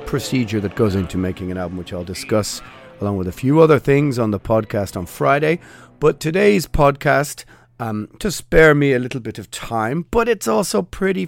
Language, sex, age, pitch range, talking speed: English, male, 40-59, 105-140 Hz, 195 wpm